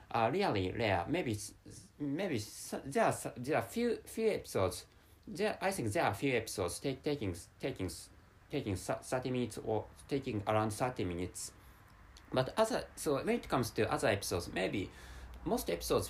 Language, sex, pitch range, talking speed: English, male, 95-130 Hz, 155 wpm